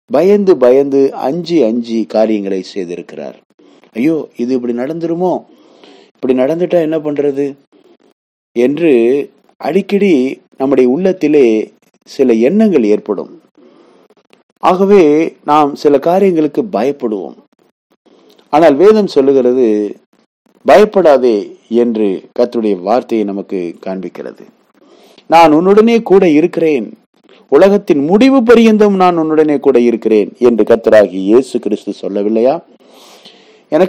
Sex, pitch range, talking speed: male, 110-175 Hz, 90 wpm